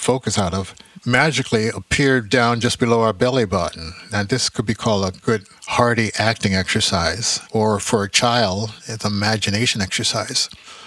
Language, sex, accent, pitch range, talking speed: English, male, American, 105-125 Hz, 155 wpm